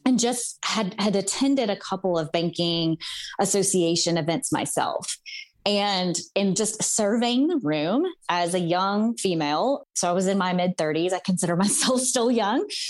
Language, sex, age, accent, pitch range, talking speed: English, female, 20-39, American, 165-215 Hz, 160 wpm